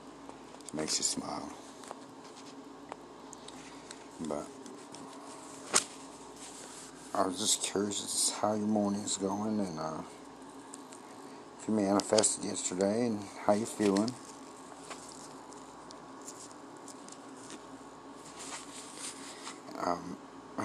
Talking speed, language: 75 wpm, English